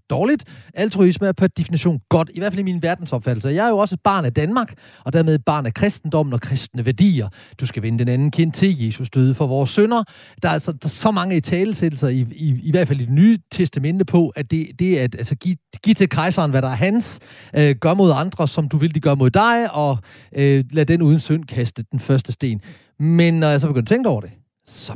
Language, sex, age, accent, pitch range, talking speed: Danish, male, 40-59, native, 130-185 Hz, 250 wpm